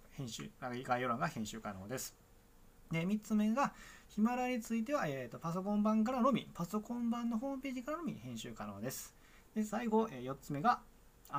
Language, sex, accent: Japanese, male, native